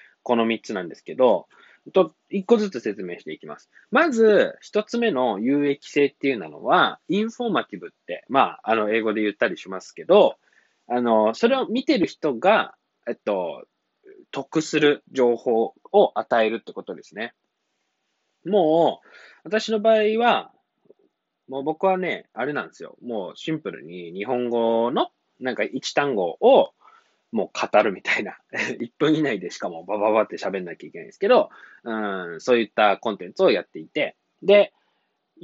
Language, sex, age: Japanese, male, 20-39